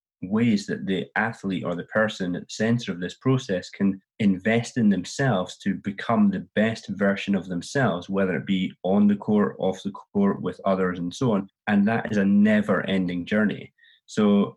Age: 30-49